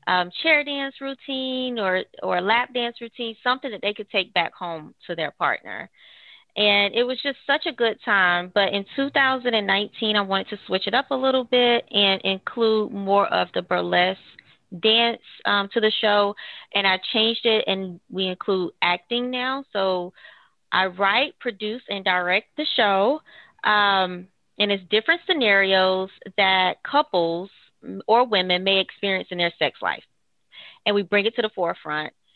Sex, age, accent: female, 20-39, American